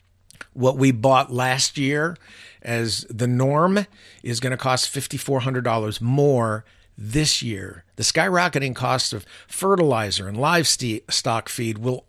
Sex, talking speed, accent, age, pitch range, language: male, 125 wpm, American, 50-69, 110-135 Hz, English